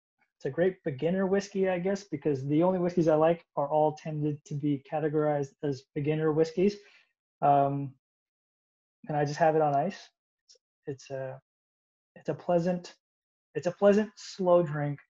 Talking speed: 165 wpm